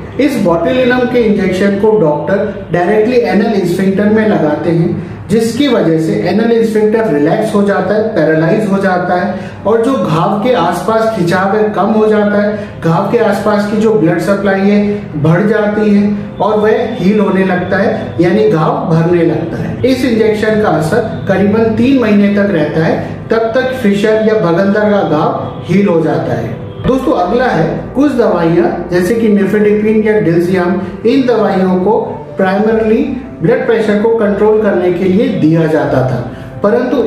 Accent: native